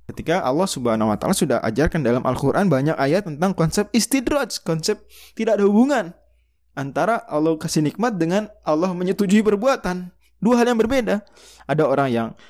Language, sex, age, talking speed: Indonesian, male, 20-39, 150 wpm